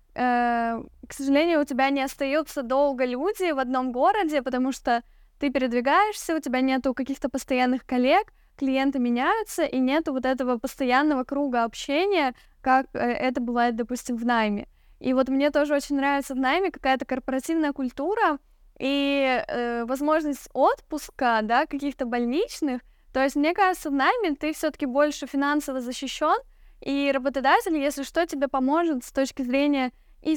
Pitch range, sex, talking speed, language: 255-290 Hz, female, 150 wpm, Russian